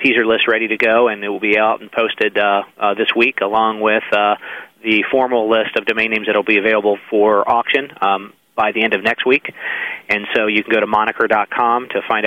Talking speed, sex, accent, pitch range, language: 230 wpm, male, American, 105-115 Hz, English